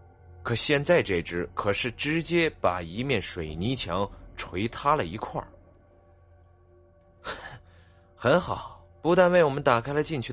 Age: 20-39